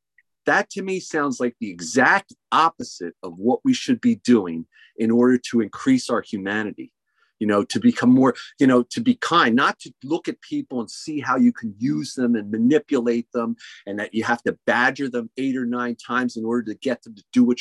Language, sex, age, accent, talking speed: English, male, 40-59, American, 220 wpm